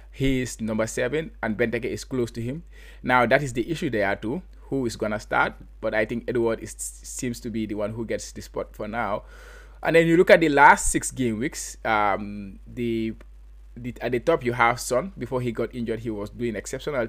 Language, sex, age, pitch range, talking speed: English, male, 20-39, 110-130 Hz, 220 wpm